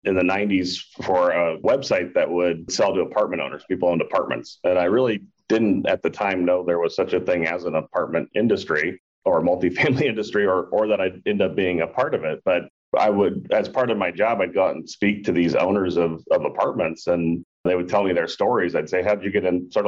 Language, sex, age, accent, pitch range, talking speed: English, male, 30-49, American, 85-95 Hz, 240 wpm